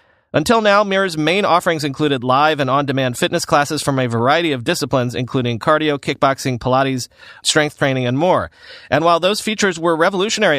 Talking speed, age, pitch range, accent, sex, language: 170 wpm, 30-49, 120-170 Hz, American, male, English